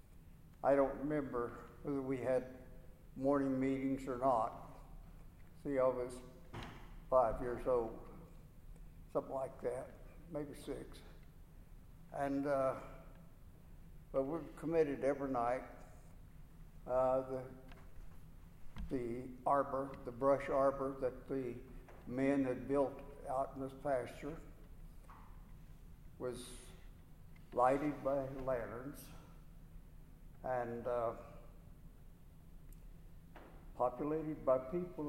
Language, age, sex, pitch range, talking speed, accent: English, 60-79, male, 120-150 Hz, 90 wpm, American